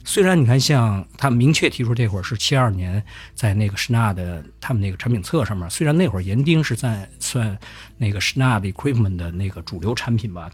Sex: male